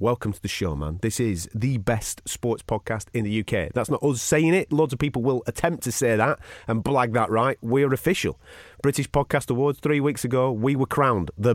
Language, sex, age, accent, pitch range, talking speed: English, male, 30-49, British, 95-125 Hz, 225 wpm